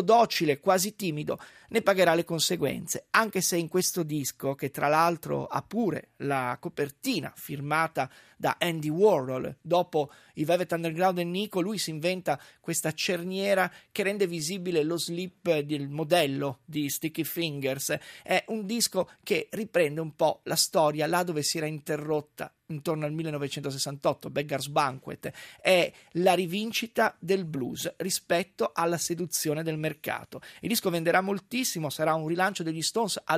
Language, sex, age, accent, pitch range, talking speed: Italian, male, 30-49, native, 155-195 Hz, 150 wpm